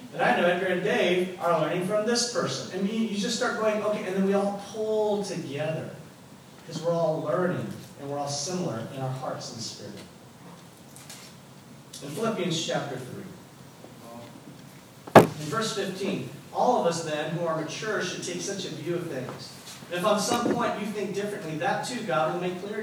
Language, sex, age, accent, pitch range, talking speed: English, male, 40-59, American, 160-205 Hz, 185 wpm